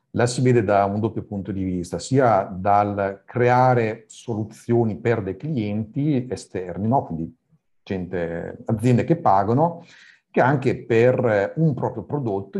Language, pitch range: Italian, 100-120 Hz